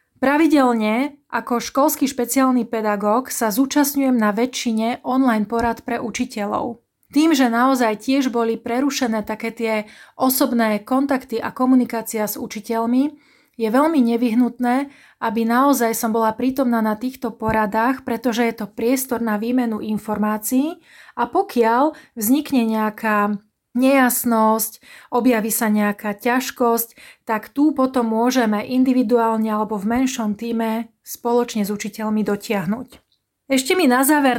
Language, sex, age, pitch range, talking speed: Slovak, female, 30-49, 225-260 Hz, 125 wpm